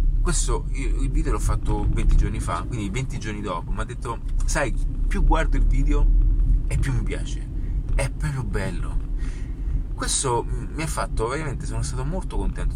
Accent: native